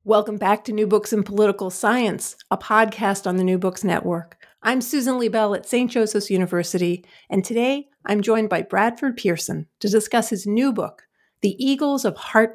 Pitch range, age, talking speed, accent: 195-245 Hz, 50-69, 180 wpm, American